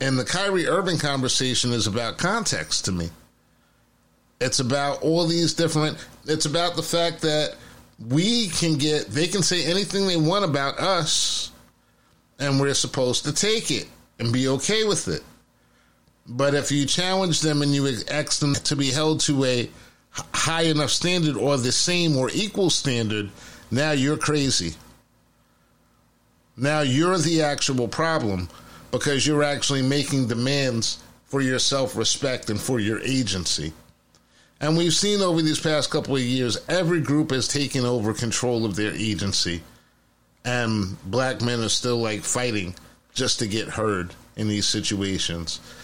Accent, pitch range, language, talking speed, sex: American, 110-150 Hz, English, 155 wpm, male